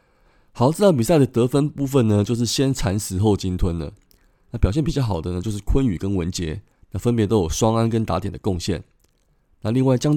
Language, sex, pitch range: Chinese, male, 95-120 Hz